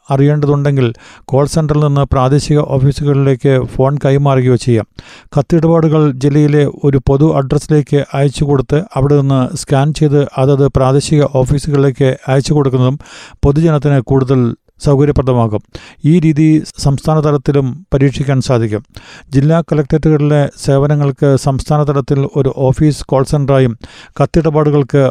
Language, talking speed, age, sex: Malayalam, 100 wpm, 50-69, male